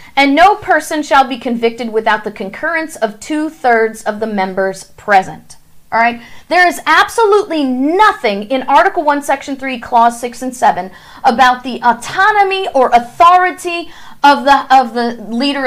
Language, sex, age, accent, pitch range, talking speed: English, female, 40-59, American, 235-330 Hz, 150 wpm